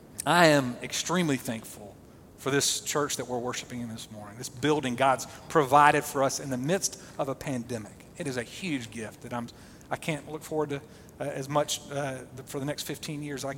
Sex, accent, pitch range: male, American, 130-165 Hz